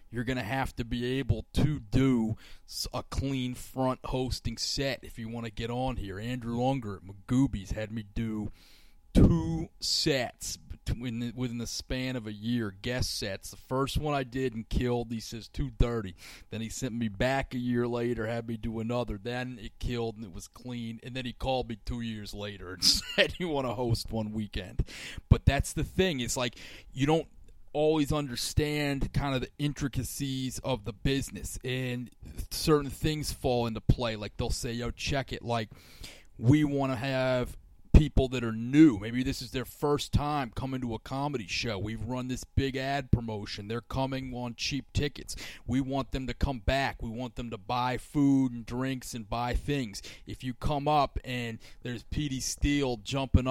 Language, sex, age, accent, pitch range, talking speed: English, male, 30-49, American, 110-130 Hz, 190 wpm